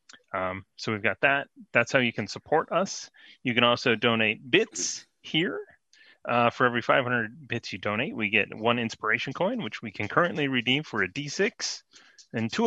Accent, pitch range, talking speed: American, 110-145 Hz, 185 wpm